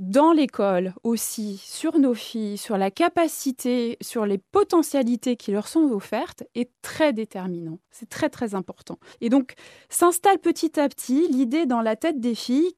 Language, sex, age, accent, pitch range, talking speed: French, female, 20-39, French, 210-295 Hz, 165 wpm